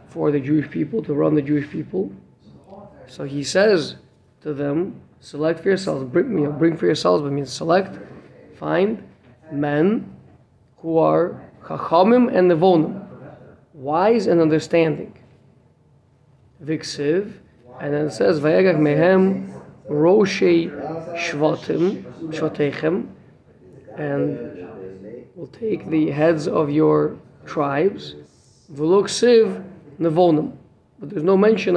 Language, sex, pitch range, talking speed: English, male, 135-175 Hz, 110 wpm